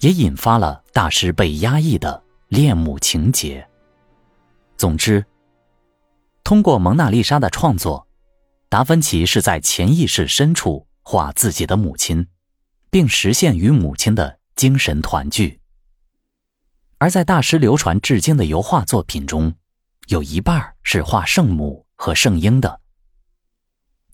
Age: 30-49